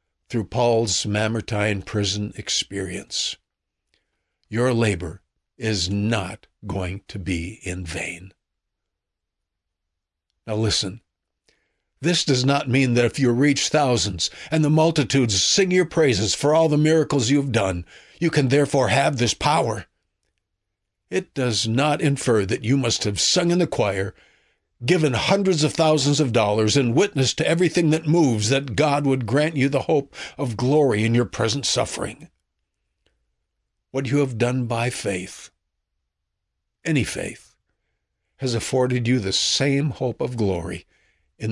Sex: male